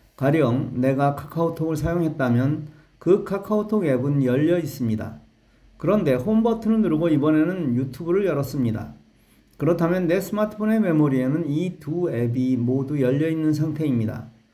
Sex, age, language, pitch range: male, 40-59, Korean, 125-170 Hz